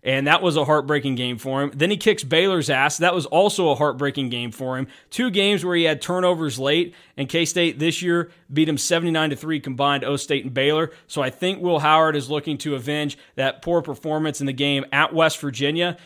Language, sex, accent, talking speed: English, male, American, 215 wpm